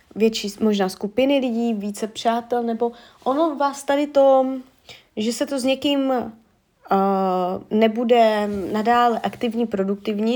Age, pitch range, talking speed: 20-39, 200-240 Hz, 115 wpm